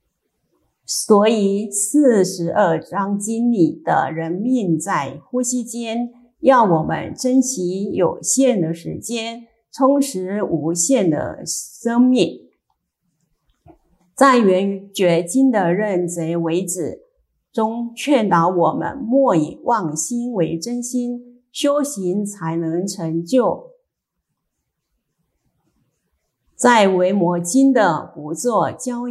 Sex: female